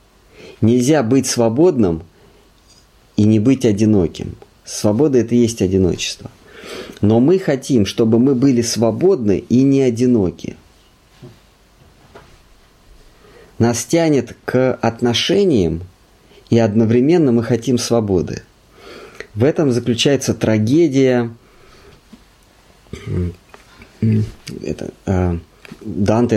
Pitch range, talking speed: 100-125 Hz, 85 wpm